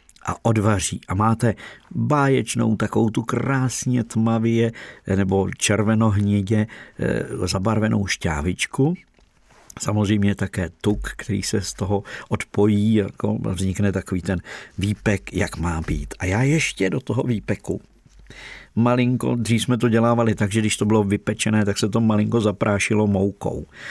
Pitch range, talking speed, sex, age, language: 100-115 Hz, 130 wpm, male, 50-69, Czech